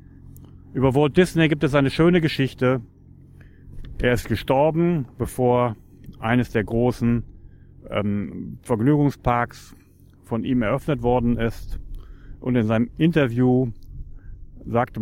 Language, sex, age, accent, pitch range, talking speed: German, male, 30-49, German, 105-130 Hz, 110 wpm